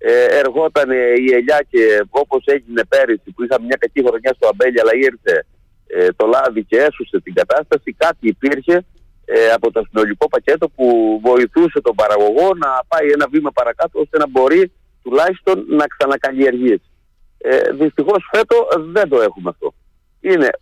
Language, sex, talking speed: Greek, male, 160 wpm